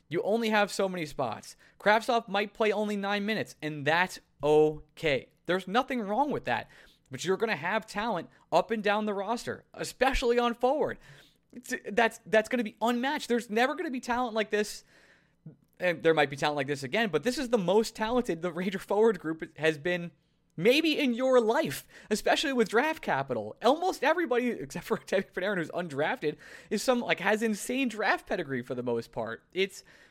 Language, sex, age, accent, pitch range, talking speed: English, male, 20-39, American, 155-220 Hz, 195 wpm